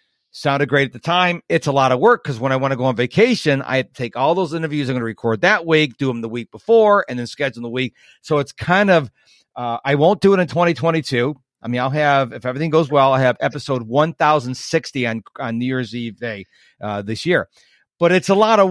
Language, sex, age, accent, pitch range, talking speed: English, male, 40-59, American, 130-175 Hz, 245 wpm